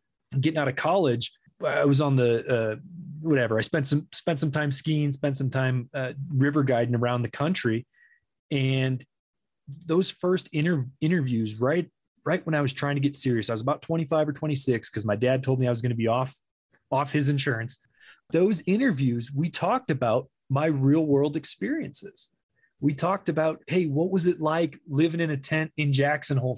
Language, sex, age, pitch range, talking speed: English, male, 20-39, 125-155 Hz, 190 wpm